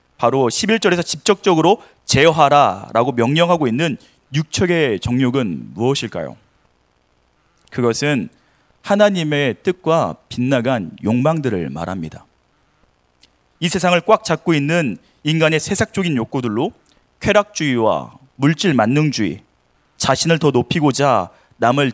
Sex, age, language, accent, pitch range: male, 30-49, Korean, native, 110-155 Hz